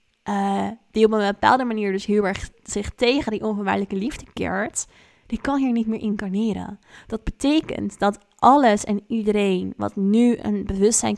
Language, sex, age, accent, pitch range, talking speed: Dutch, female, 20-39, Dutch, 200-230 Hz, 165 wpm